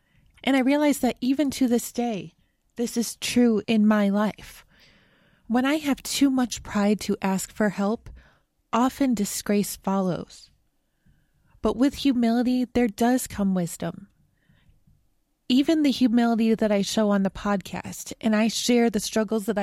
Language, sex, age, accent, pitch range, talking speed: English, female, 20-39, American, 205-245 Hz, 150 wpm